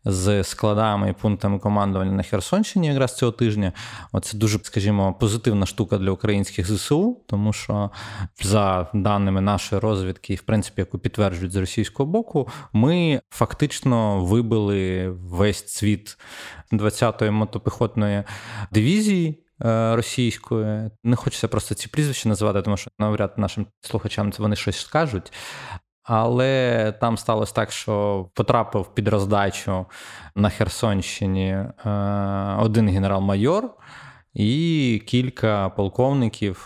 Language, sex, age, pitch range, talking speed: Ukrainian, male, 20-39, 100-115 Hz, 115 wpm